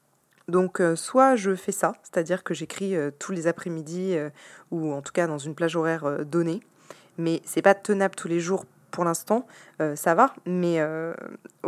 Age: 20-39